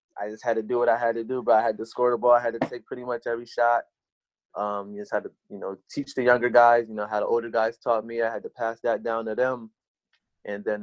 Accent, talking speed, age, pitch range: American, 300 wpm, 20-39, 110-130 Hz